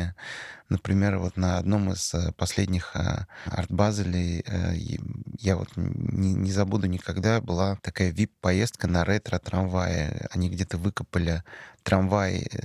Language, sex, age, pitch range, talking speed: Russian, male, 30-49, 90-105 Hz, 100 wpm